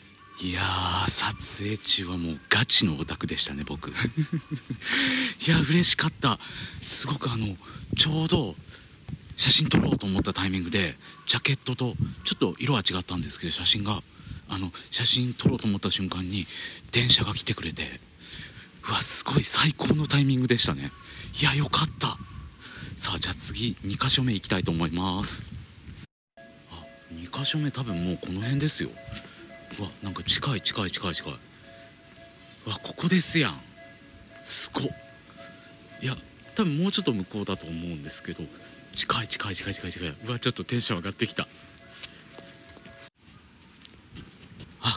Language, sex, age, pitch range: Japanese, male, 40-59, 95-135 Hz